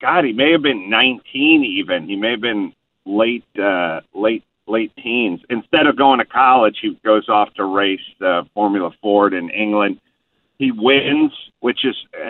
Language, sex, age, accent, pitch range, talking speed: English, male, 50-69, American, 135-225 Hz, 170 wpm